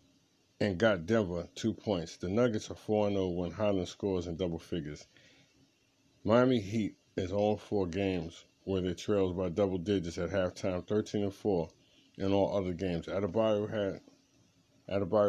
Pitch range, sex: 90-105 Hz, male